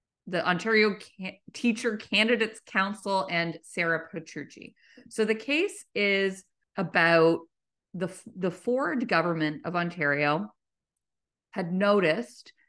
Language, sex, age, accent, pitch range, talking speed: English, female, 30-49, American, 170-230 Hz, 110 wpm